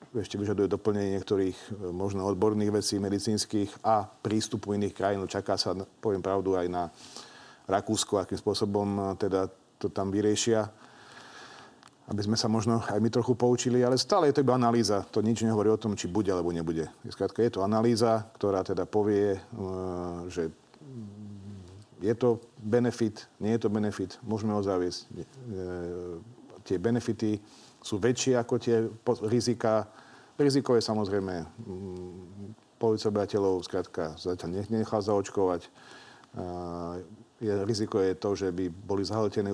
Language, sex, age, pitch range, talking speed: Slovak, male, 40-59, 95-110 Hz, 135 wpm